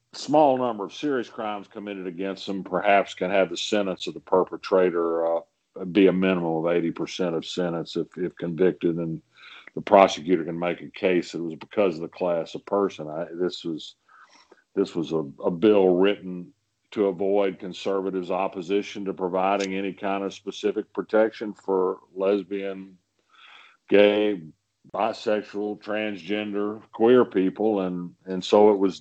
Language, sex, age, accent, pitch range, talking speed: English, male, 50-69, American, 90-105 Hz, 155 wpm